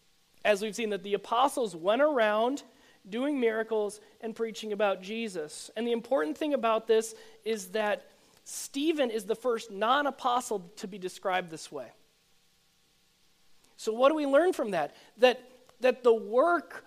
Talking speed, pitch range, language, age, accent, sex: 155 wpm, 210-265 Hz, English, 40-59, American, male